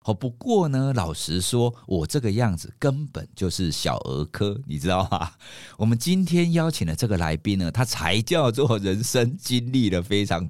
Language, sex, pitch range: Chinese, male, 95-130 Hz